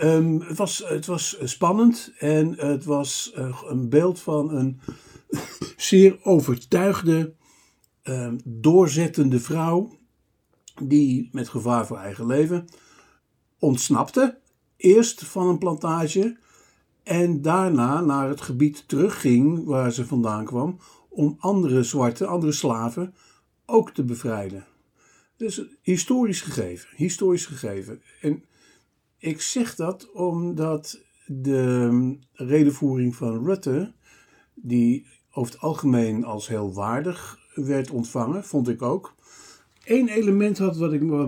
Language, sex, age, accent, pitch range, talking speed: Dutch, male, 60-79, Dutch, 125-175 Hz, 110 wpm